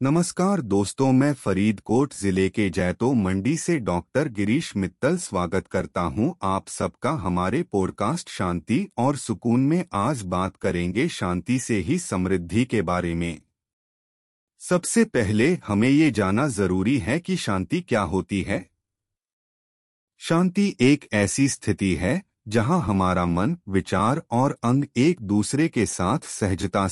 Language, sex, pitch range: Hindi, male, 95-140 Hz